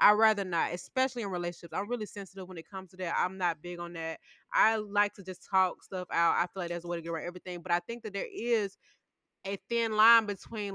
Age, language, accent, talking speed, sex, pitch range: 20-39, English, American, 260 wpm, female, 185-280 Hz